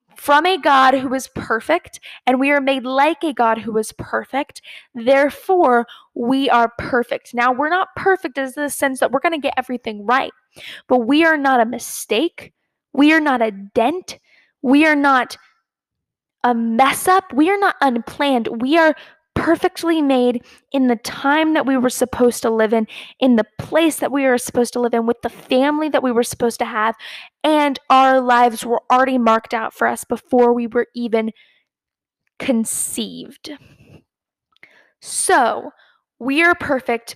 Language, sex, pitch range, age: English, female, 235-285 Hz, 10-29